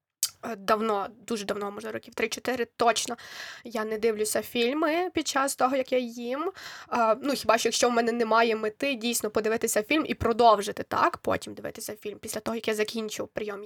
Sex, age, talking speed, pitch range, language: female, 20-39, 175 wpm, 225-265 Hz, Ukrainian